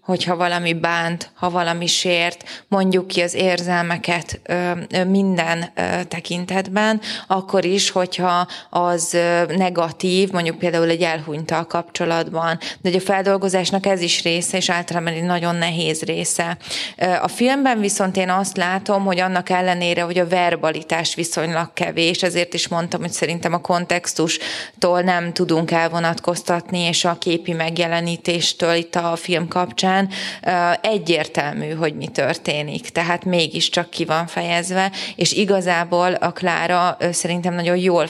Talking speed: 130 wpm